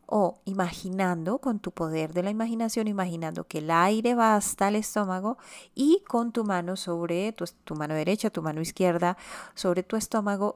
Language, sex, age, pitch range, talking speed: Spanish, female, 30-49, 165-220 Hz, 175 wpm